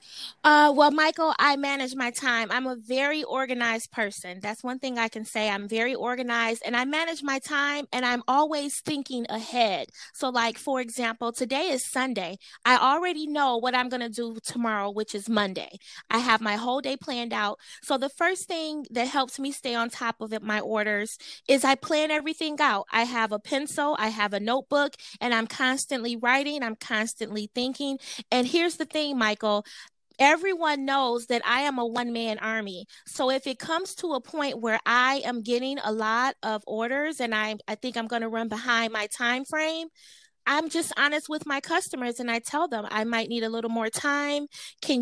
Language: English